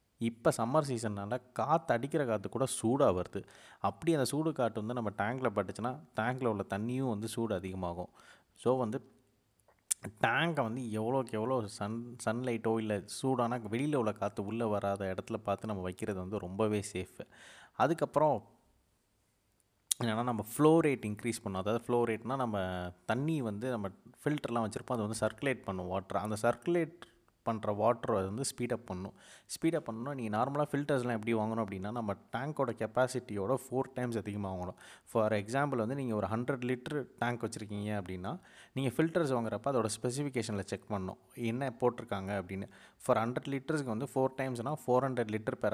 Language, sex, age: Tamil, male, 30-49